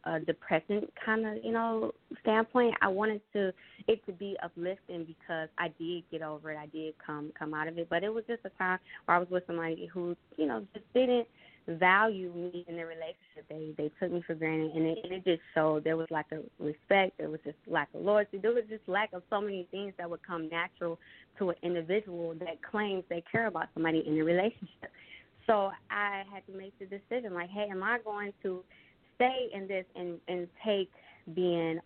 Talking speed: 220 wpm